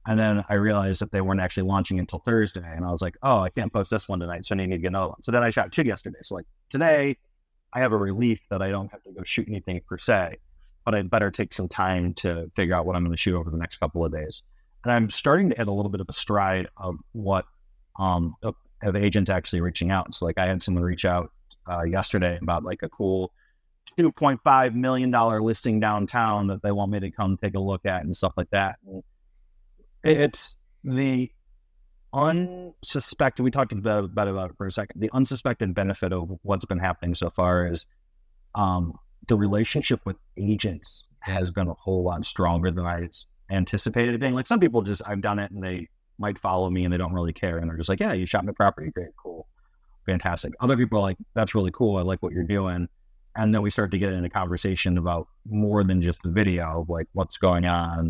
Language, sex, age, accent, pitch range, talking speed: English, male, 30-49, American, 90-110 Hz, 225 wpm